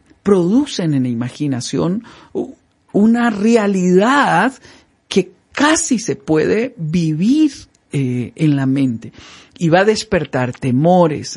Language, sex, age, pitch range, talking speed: Spanish, male, 50-69, 130-195 Hz, 105 wpm